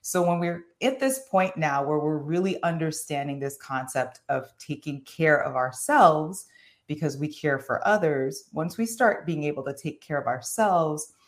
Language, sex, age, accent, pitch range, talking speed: English, female, 30-49, American, 150-190 Hz, 175 wpm